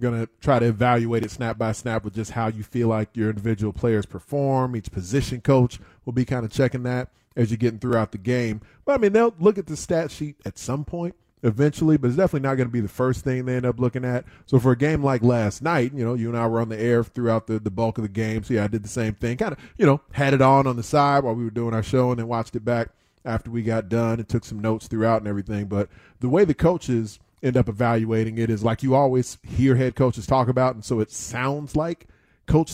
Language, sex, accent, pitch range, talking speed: English, male, American, 115-135 Hz, 270 wpm